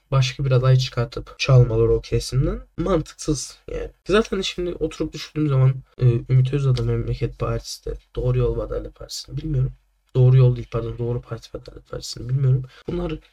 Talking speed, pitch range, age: 155 wpm, 125-165 Hz, 10-29